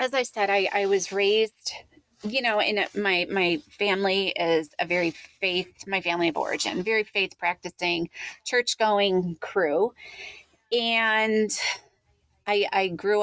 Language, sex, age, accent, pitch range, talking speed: English, female, 30-49, American, 160-200 Hz, 140 wpm